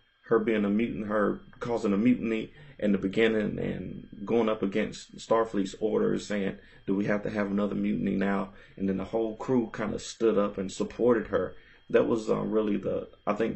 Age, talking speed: 30-49, 200 wpm